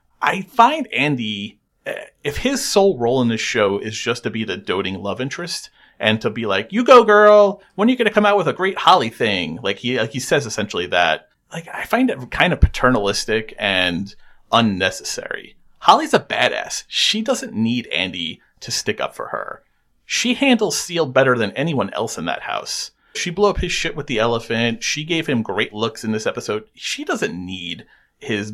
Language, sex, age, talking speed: English, male, 30-49, 200 wpm